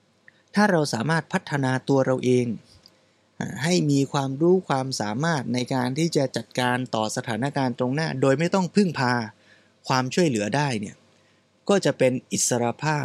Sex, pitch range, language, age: male, 120-155 Hz, Thai, 20-39